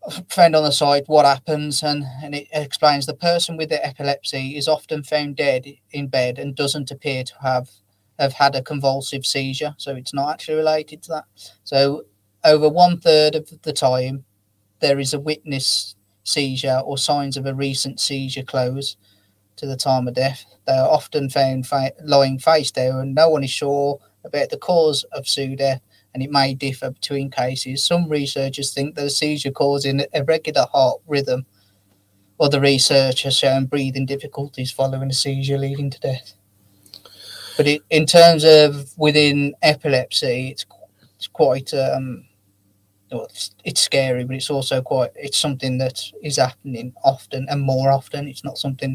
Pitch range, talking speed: 125-145 Hz, 170 wpm